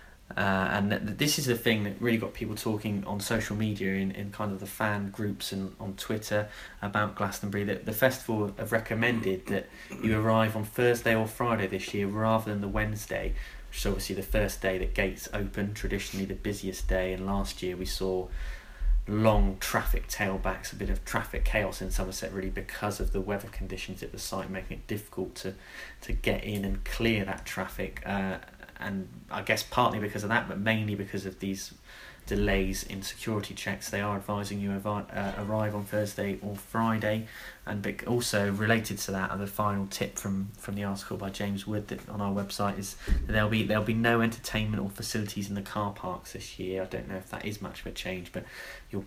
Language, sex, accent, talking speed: English, male, British, 210 wpm